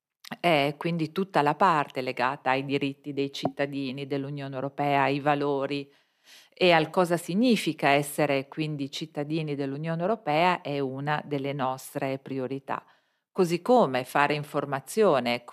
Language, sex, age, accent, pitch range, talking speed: Italian, female, 40-59, native, 140-170 Hz, 120 wpm